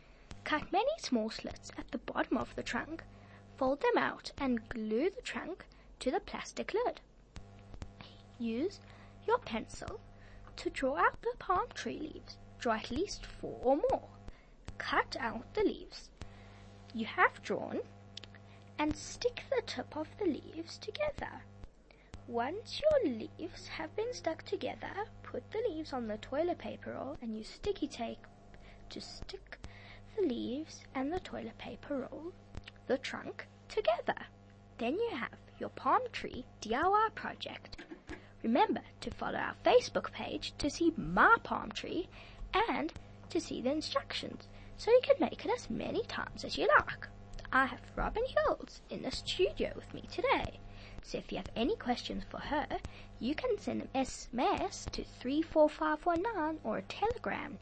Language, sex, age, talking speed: English, female, 20-39, 150 wpm